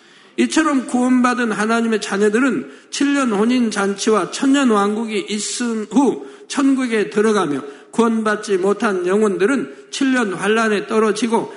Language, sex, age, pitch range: Korean, male, 50-69, 205-250 Hz